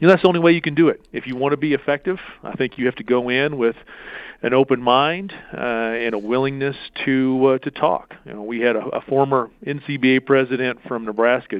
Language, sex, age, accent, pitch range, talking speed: English, male, 40-59, American, 110-135 Hz, 240 wpm